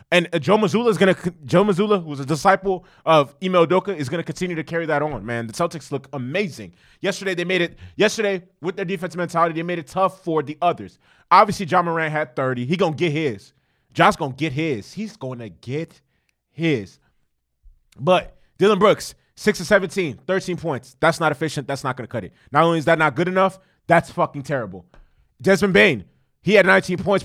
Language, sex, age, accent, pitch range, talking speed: English, male, 20-39, American, 145-200 Hz, 200 wpm